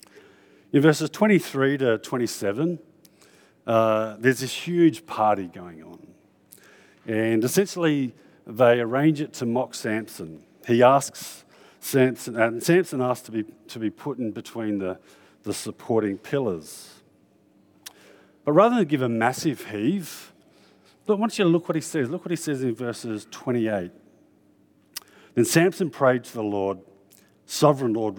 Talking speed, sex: 145 wpm, male